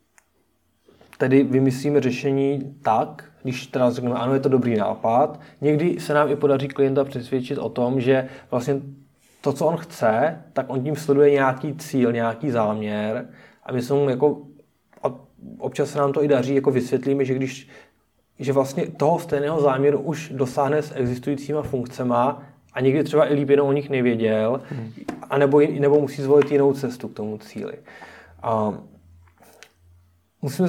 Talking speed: 155 wpm